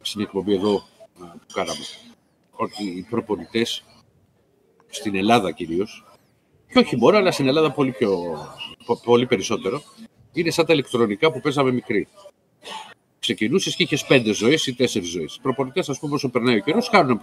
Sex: male